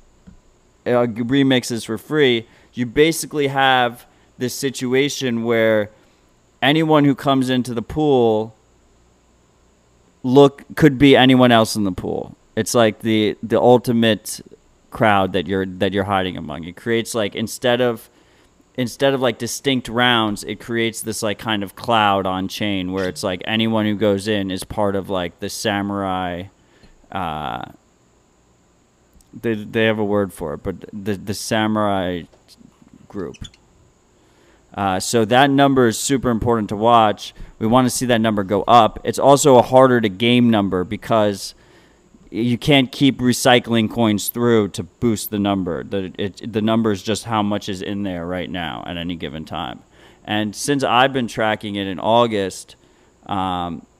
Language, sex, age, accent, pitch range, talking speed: English, male, 30-49, American, 100-120 Hz, 160 wpm